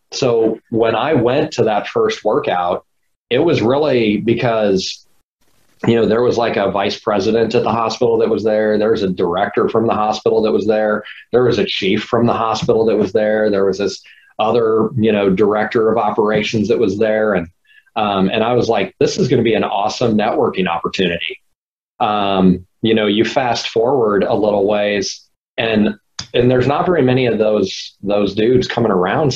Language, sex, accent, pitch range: English, male, American, 95-120 Hz